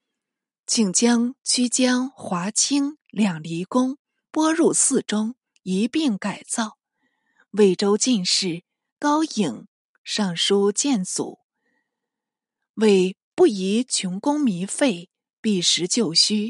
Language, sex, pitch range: Chinese, female, 200-265 Hz